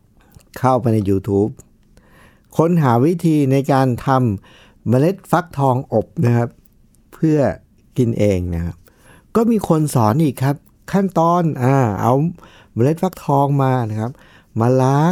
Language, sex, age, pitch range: Thai, male, 60-79, 105-135 Hz